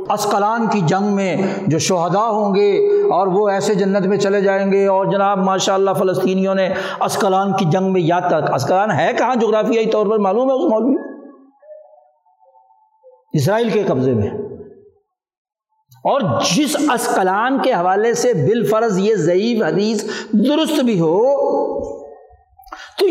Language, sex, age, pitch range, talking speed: Urdu, male, 60-79, 195-280 Hz, 145 wpm